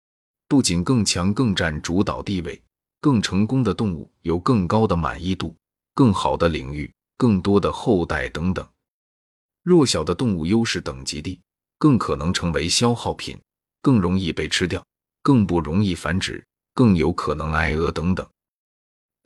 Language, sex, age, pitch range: Chinese, male, 30-49, 80-105 Hz